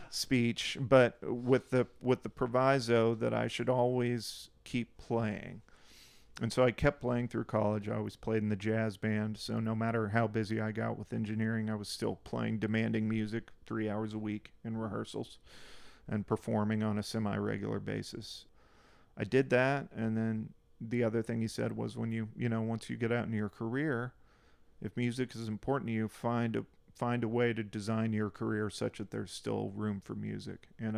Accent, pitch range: American, 105-115 Hz